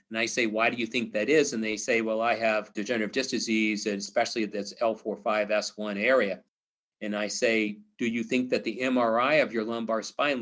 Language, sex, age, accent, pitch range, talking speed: English, male, 40-59, American, 105-125 Hz, 200 wpm